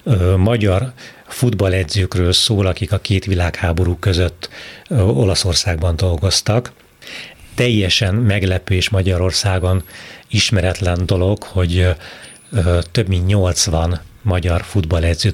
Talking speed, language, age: 85 wpm, Hungarian, 30-49